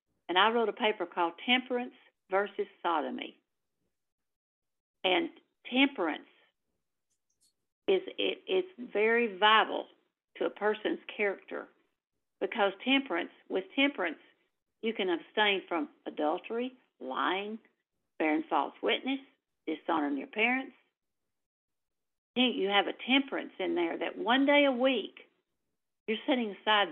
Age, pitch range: 50-69, 180-235 Hz